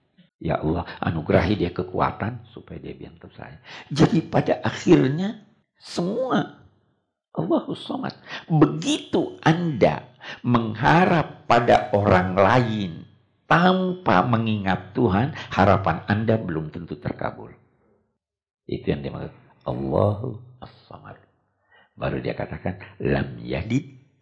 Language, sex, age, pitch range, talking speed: Indonesian, male, 60-79, 105-155 Hz, 100 wpm